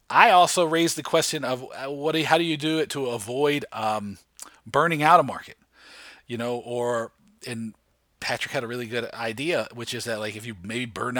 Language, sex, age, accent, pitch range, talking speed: English, male, 40-59, American, 125-165 Hz, 210 wpm